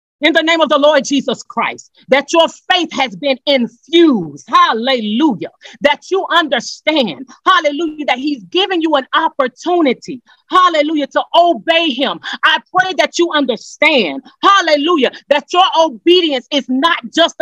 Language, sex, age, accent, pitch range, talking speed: English, female, 30-49, American, 285-380 Hz, 140 wpm